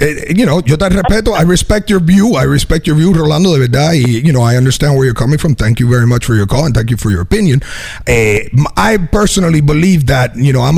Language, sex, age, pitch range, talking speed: English, male, 30-49, 130-185 Hz, 255 wpm